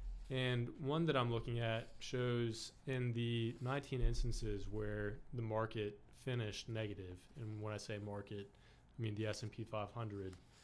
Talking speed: 145 wpm